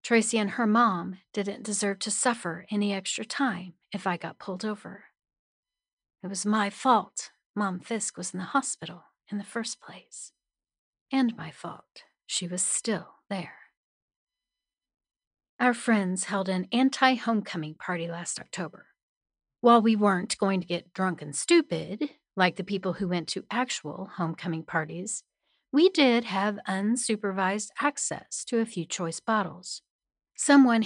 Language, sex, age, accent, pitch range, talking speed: English, female, 40-59, American, 185-240 Hz, 145 wpm